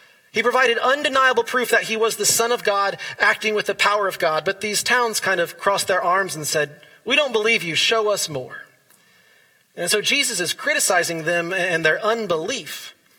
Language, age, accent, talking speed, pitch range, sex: English, 30-49, American, 195 wpm, 155-220 Hz, male